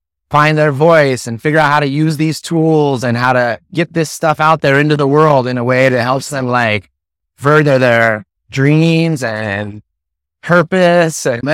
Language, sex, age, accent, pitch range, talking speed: English, male, 30-49, American, 120-160 Hz, 175 wpm